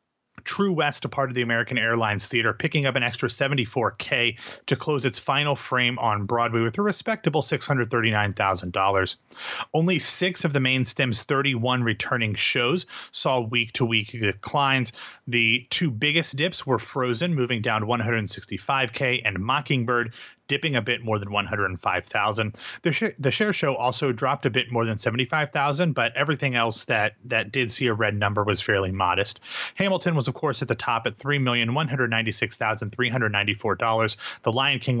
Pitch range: 115-140 Hz